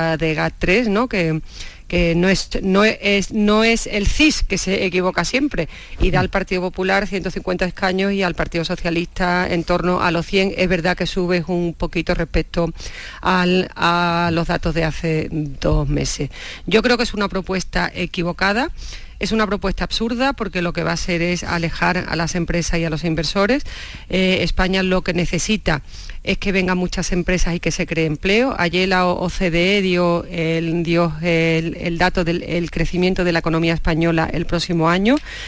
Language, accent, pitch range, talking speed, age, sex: Spanish, Spanish, 170-185 Hz, 170 wpm, 40-59, female